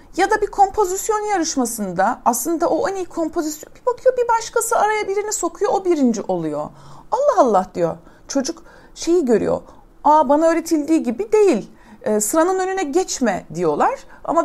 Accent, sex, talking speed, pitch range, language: native, female, 155 wpm, 230-340 Hz, Turkish